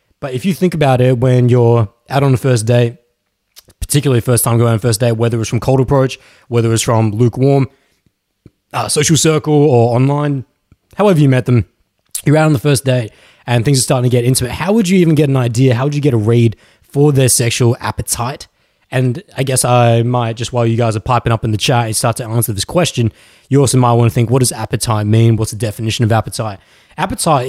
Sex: male